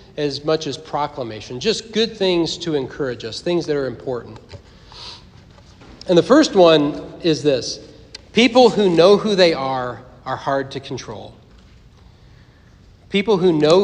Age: 40-59